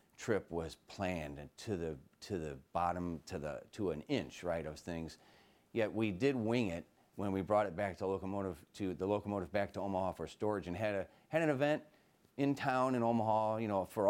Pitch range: 85-115 Hz